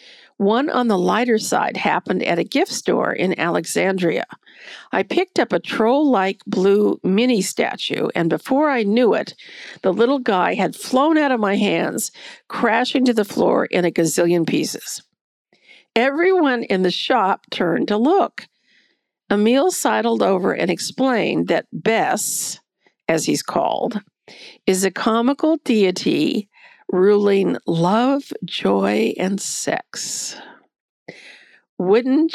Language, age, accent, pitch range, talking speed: English, 50-69, American, 195-275 Hz, 130 wpm